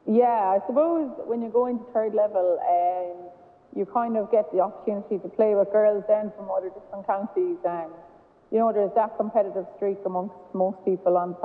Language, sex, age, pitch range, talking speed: English, female, 30-49, 180-205 Hz, 200 wpm